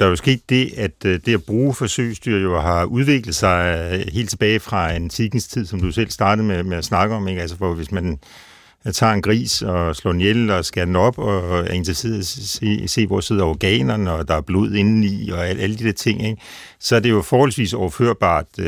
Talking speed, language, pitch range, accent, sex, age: 220 wpm, Danish, 90-110 Hz, native, male, 60-79